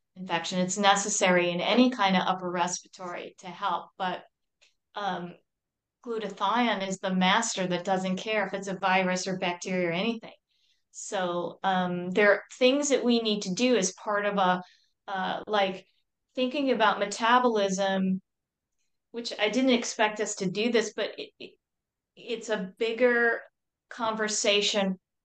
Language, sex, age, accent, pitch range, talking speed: English, female, 30-49, American, 180-215 Hz, 145 wpm